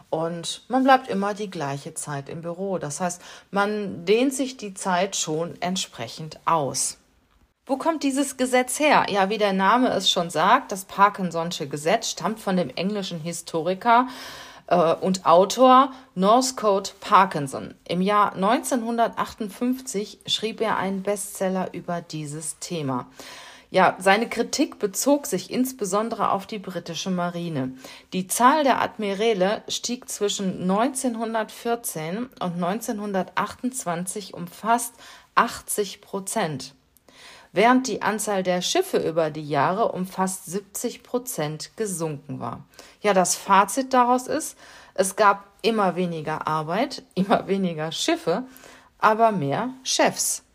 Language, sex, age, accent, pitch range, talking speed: German, female, 40-59, German, 170-220 Hz, 125 wpm